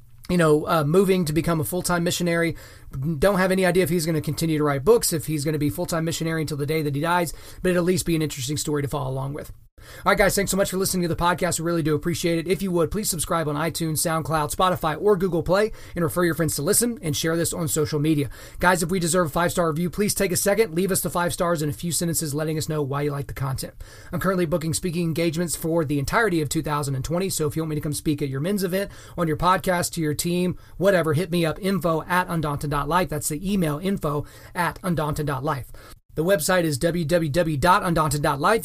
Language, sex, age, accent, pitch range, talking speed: English, male, 30-49, American, 150-180 Hz, 245 wpm